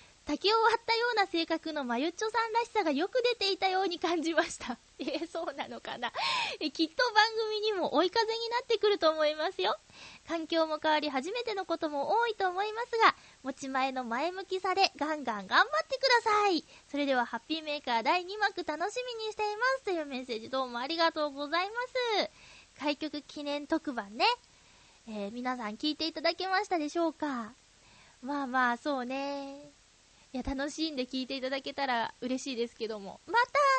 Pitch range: 255-390 Hz